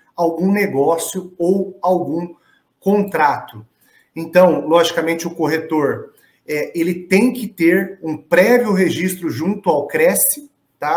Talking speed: 115 wpm